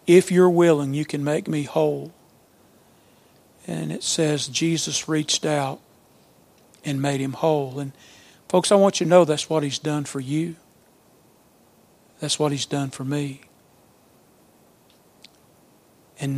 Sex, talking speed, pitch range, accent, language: male, 140 wpm, 140-160 Hz, American, English